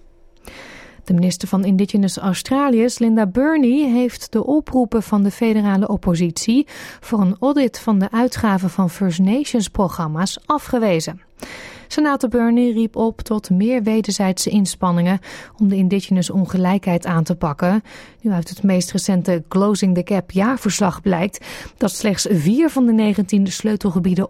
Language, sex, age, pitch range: Dutch, female, 30-49, 190-240 Hz